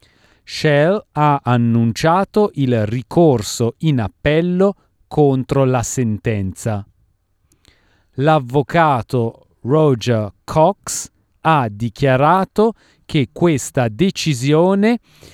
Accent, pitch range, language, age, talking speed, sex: native, 120-155 Hz, Italian, 40-59, 70 wpm, male